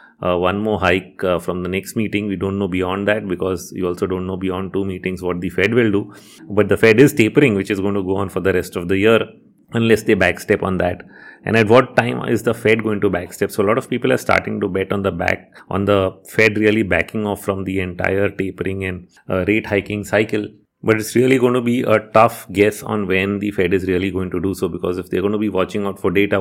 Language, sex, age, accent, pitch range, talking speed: English, male, 30-49, Indian, 95-105 Hz, 260 wpm